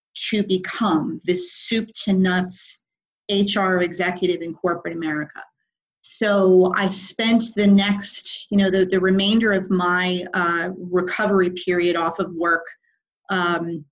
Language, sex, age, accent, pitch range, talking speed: English, female, 30-49, American, 180-205 Hz, 130 wpm